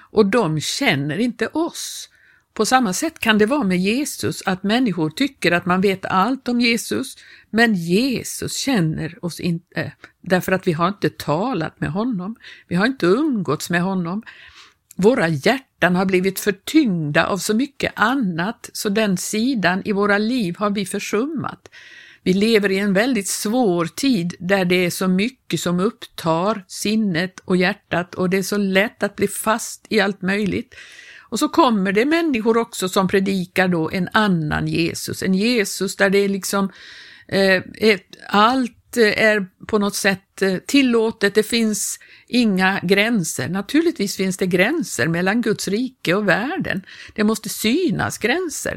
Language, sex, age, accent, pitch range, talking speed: Swedish, female, 60-79, native, 185-225 Hz, 155 wpm